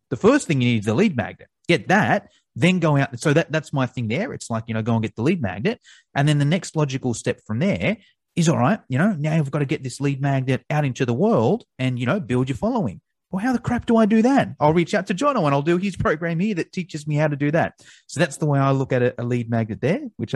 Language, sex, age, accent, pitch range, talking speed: English, male, 30-49, Australian, 125-160 Hz, 295 wpm